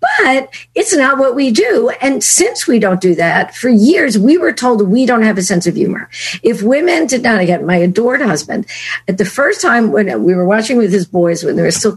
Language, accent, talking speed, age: English, American, 235 wpm, 50-69